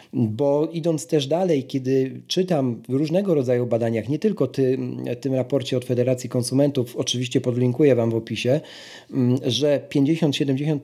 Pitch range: 125-155 Hz